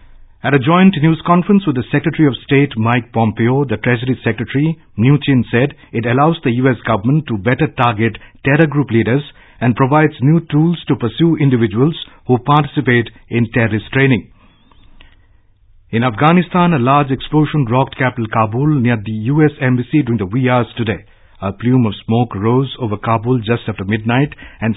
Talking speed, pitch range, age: 165 wpm, 115-145 Hz, 50-69